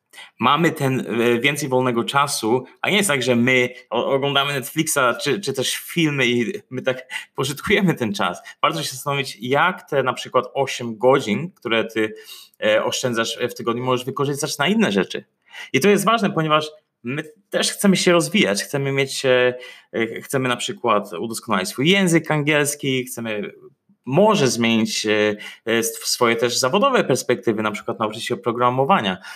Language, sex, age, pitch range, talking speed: Polish, male, 20-39, 120-155 Hz, 150 wpm